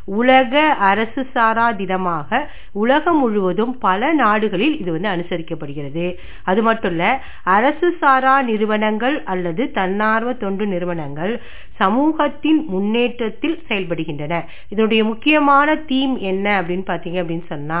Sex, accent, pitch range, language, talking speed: female, native, 185-255 Hz, Tamil, 100 wpm